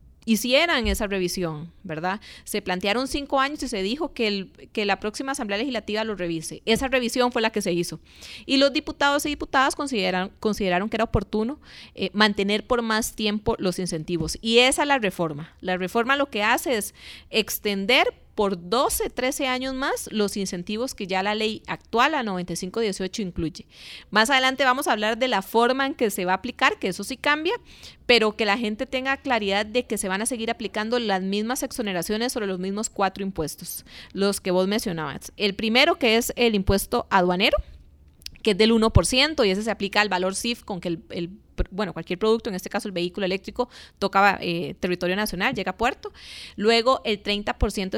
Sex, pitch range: female, 190-245 Hz